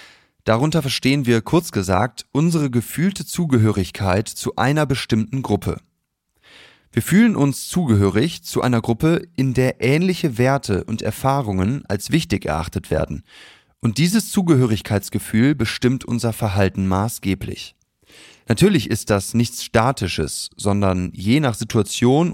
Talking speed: 120 wpm